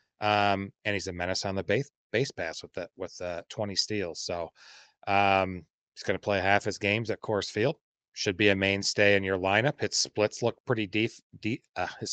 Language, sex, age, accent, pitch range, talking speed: English, male, 30-49, American, 95-120 Hz, 215 wpm